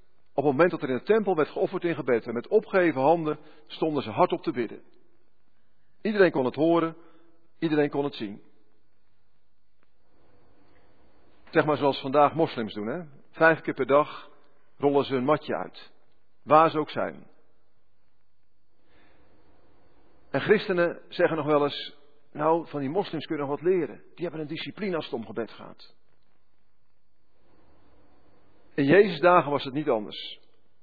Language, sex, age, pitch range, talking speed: Dutch, male, 50-69, 135-190 Hz, 155 wpm